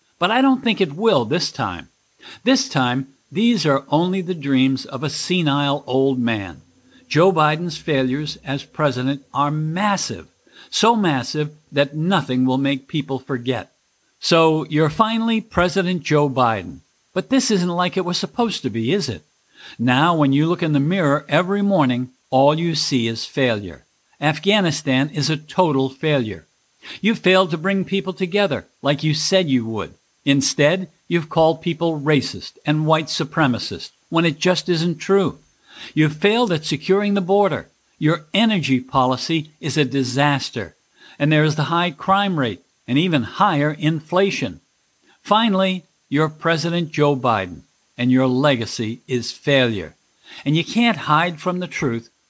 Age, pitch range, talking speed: 60-79, 135-180 Hz, 155 wpm